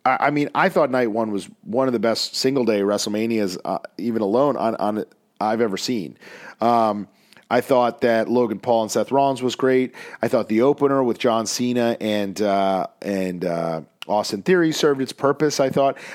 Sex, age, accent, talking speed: male, 40-59, American, 190 wpm